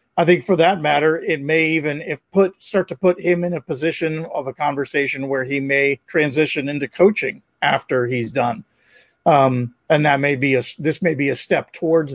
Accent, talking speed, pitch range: American, 200 wpm, 140-170 Hz